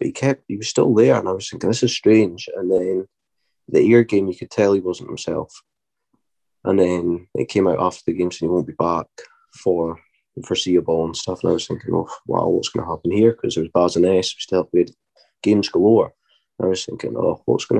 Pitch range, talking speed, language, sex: 90-105 Hz, 235 wpm, English, male